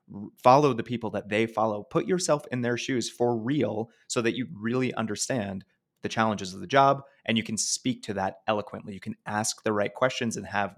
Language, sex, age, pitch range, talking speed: English, male, 30-49, 105-120 Hz, 210 wpm